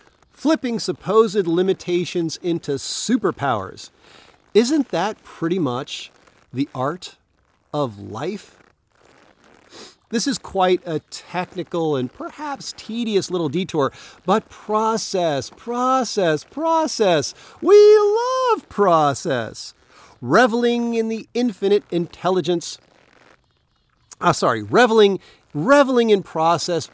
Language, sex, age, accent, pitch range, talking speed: English, male, 40-59, American, 140-190 Hz, 90 wpm